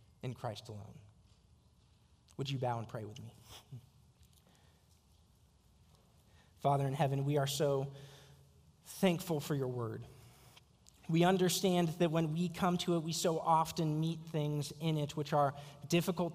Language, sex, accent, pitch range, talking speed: English, male, American, 125-160 Hz, 140 wpm